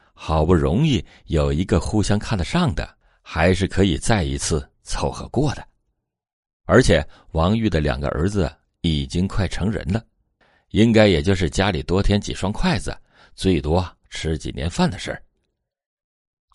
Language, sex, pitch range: Chinese, male, 75-110 Hz